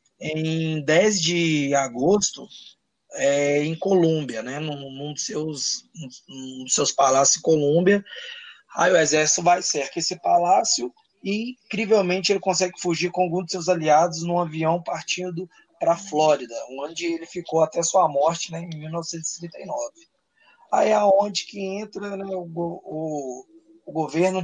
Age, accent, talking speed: 20-39, Brazilian, 140 wpm